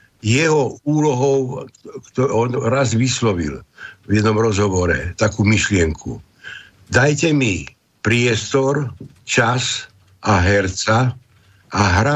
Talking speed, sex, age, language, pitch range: 90 wpm, male, 60-79, Slovak, 100-130 Hz